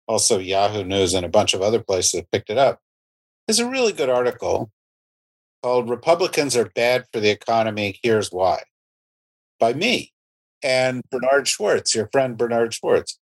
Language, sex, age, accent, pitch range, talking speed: English, male, 50-69, American, 105-135 Hz, 160 wpm